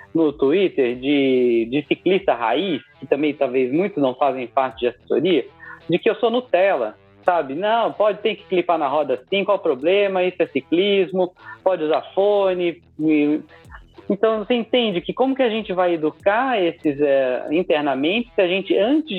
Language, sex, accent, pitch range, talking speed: Portuguese, male, Brazilian, 145-195 Hz, 170 wpm